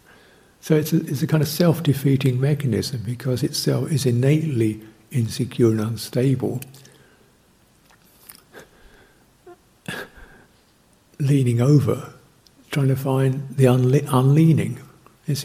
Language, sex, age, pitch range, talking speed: English, male, 60-79, 120-145 Hz, 100 wpm